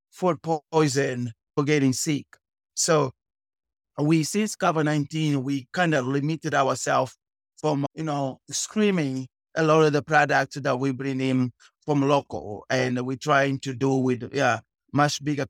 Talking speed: 150 wpm